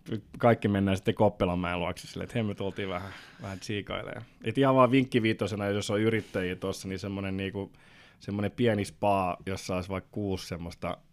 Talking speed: 160 wpm